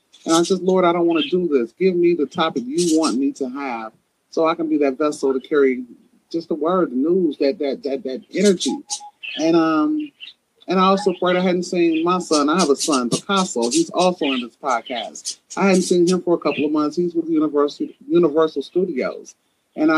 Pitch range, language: 145-190 Hz, English